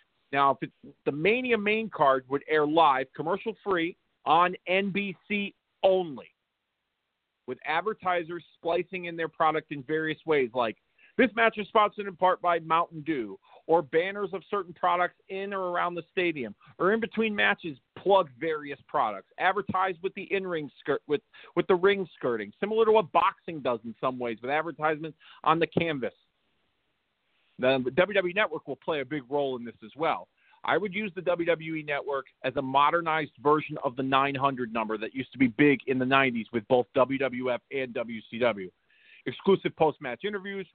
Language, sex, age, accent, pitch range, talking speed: English, male, 40-59, American, 145-195 Hz, 175 wpm